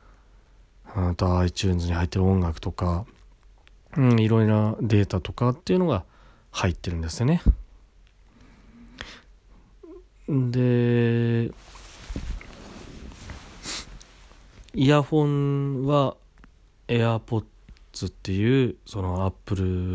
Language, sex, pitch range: Japanese, male, 90-125 Hz